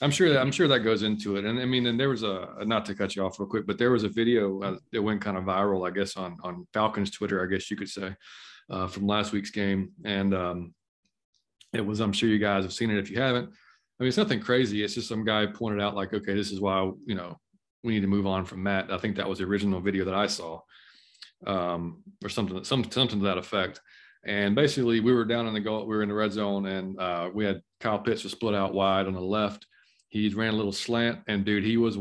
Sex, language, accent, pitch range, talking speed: male, English, American, 100-115 Hz, 270 wpm